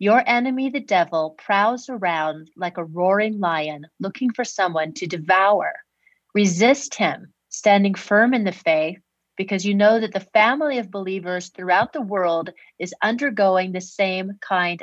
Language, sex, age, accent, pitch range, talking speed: English, female, 30-49, American, 180-225 Hz, 155 wpm